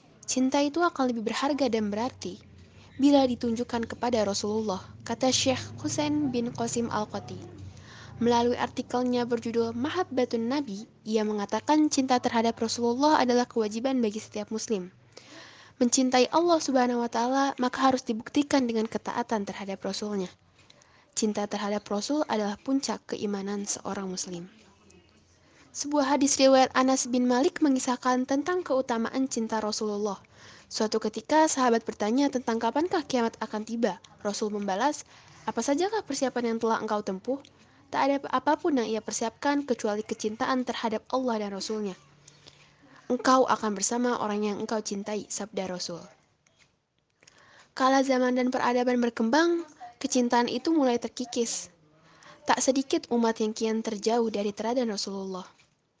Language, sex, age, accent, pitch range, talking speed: Indonesian, female, 10-29, native, 215-265 Hz, 130 wpm